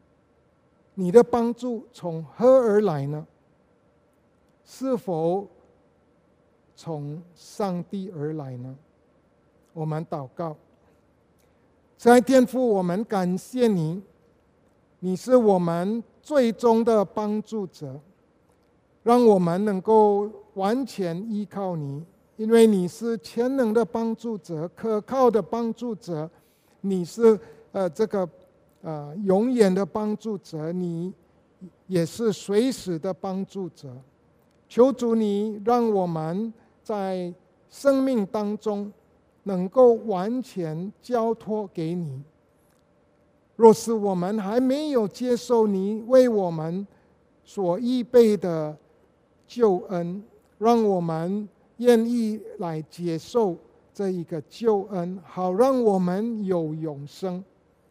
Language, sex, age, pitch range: English, male, 50-69, 175-230 Hz